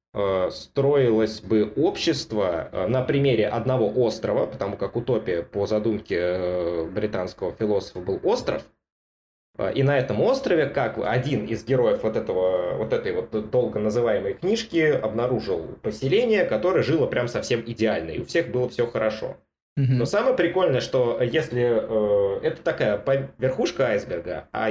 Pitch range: 110-165 Hz